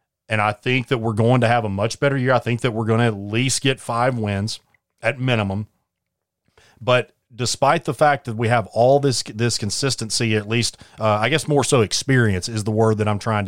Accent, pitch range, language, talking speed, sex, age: American, 105-125 Hz, English, 225 wpm, male, 30-49